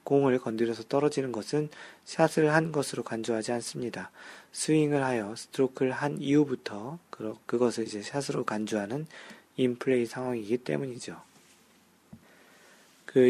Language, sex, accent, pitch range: Korean, male, native, 115-150 Hz